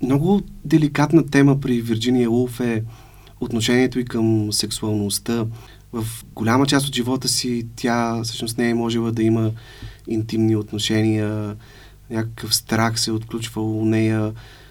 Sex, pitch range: male, 105-120 Hz